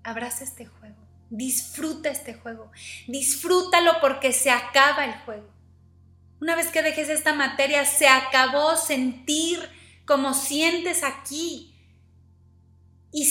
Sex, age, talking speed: female, 30-49, 115 wpm